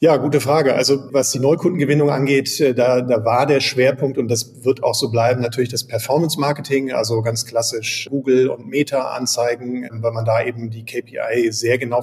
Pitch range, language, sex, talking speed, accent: 120-135 Hz, German, male, 180 wpm, German